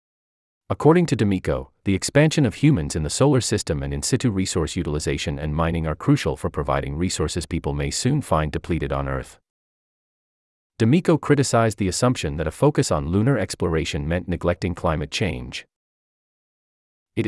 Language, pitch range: English, 75-110 Hz